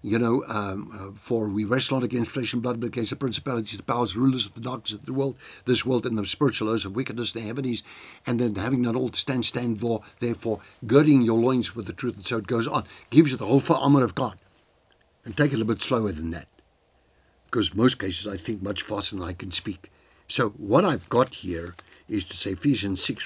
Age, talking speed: 60-79, 245 wpm